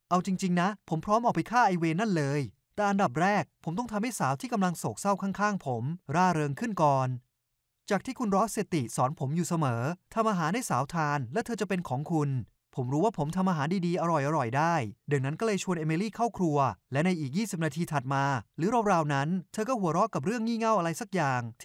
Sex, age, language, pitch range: male, 20-39, Thai, 140-200 Hz